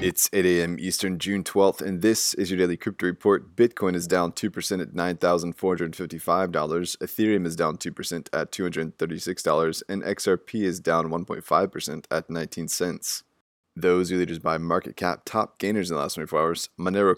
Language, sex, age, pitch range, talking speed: English, male, 20-39, 85-95 Hz, 165 wpm